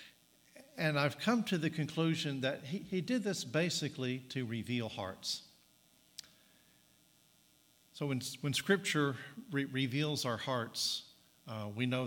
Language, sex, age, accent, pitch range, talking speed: English, male, 50-69, American, 115-155 Hz, 125 wpm